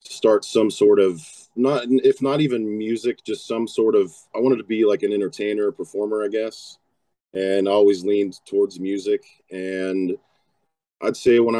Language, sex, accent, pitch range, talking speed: English, male, American, 95-135 Hz, 165 wpm